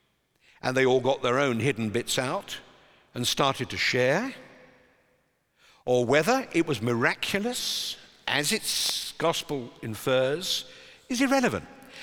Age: 50-69